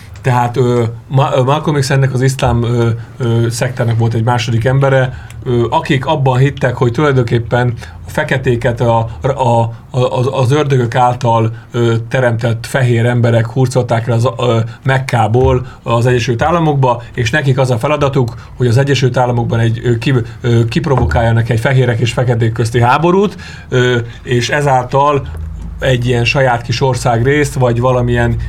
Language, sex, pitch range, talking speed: Hungarian, male, 115-135 Hz, 135 wpm